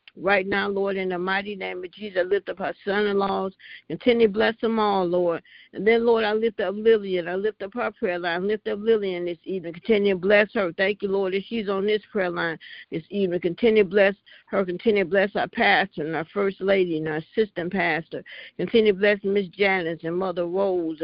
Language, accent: English, American